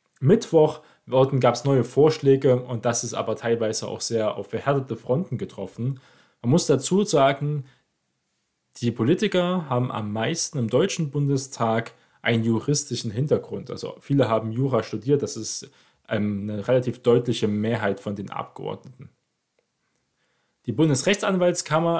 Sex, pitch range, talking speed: male, 115-150 Hz, 130 wpm